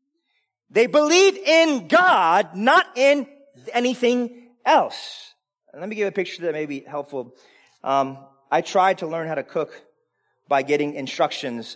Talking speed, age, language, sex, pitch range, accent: 150 wpm, 30-49, English, male, 170-280 Hz, American